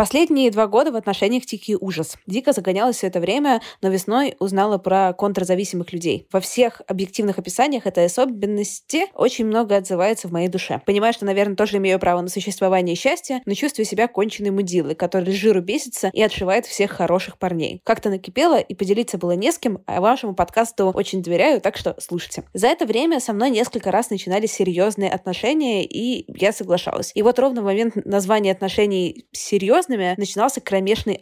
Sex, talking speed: female, 175 wpm